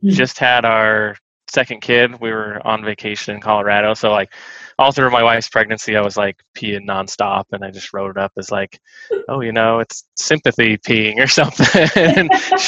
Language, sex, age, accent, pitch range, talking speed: English, male, 20-39, American, 100-120 Hz, 195 wpm